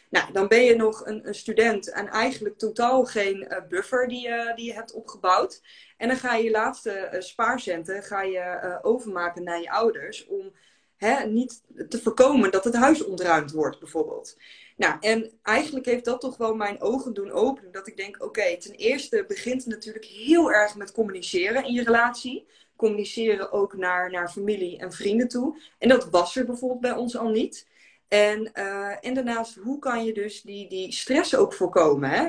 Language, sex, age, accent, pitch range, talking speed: Dutch, female, 20-39, Dutch, 195-255 Hz, 185 wpm